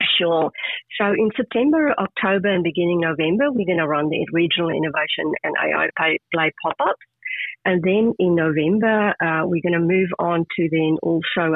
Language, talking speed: English, 165 wpm